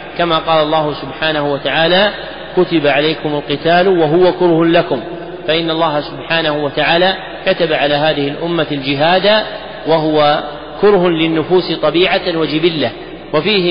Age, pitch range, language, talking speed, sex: 40-59, 150-175 Hz, Arabic, 115 wpm, male